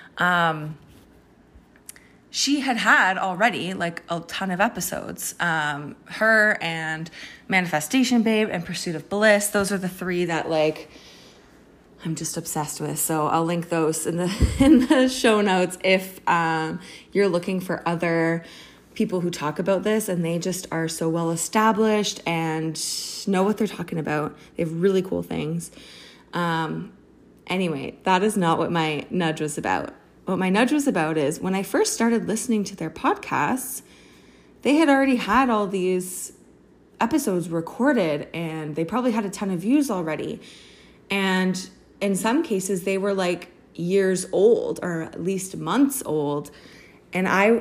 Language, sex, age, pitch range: English, female, 20-39, 165-210 Hz